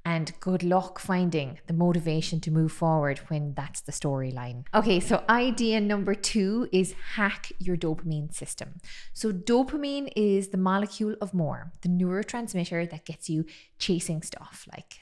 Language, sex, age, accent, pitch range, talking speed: English, female, 20-39, Irish, 170-225 Hz, 150 wpm